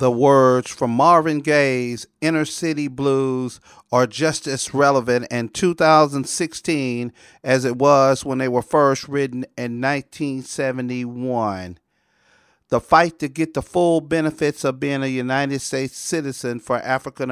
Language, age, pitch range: English, 40-59, 125-160 Hz